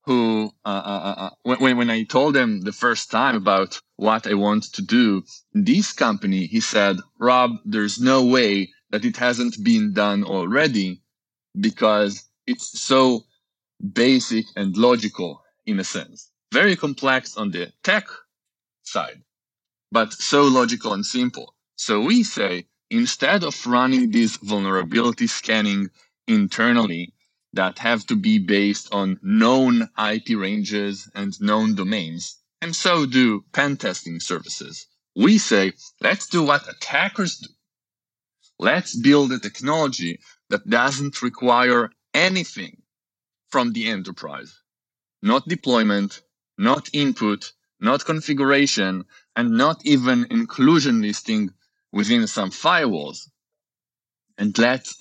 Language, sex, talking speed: English, male, 125 wpm